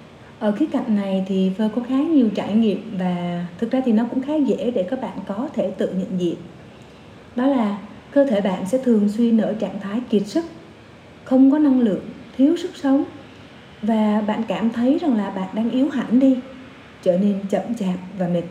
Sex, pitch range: female, 195-260 Hz